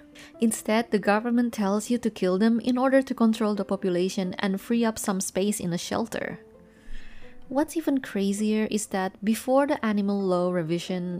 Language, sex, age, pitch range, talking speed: English, female, 20-39, 180-255 Hz, 170 wpm